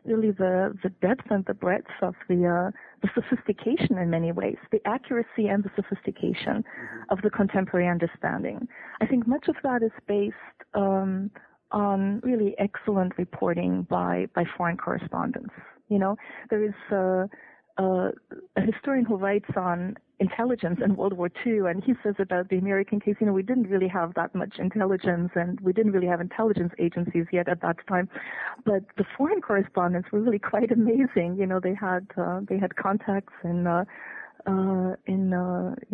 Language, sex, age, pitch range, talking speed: English, female, 30-49, 180-210 Hz, 175 wpm